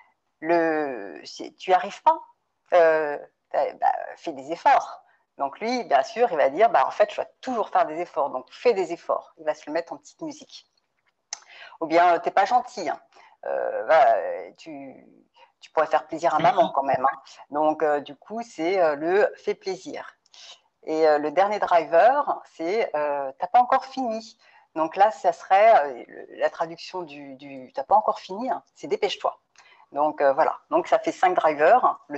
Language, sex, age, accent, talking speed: French, female, 50-69, French, 215 wpm